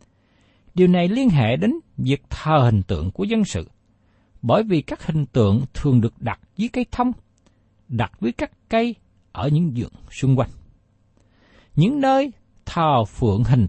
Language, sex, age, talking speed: Vietnamese, male, 60-79, 160 wpm